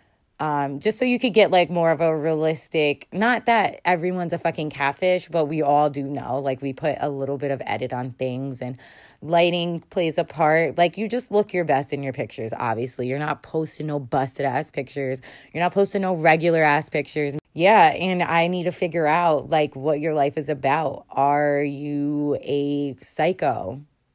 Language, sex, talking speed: English, female, 195 wpm